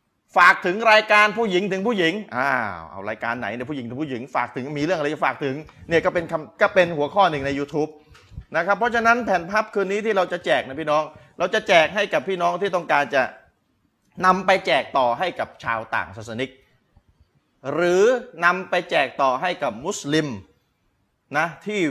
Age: 30-49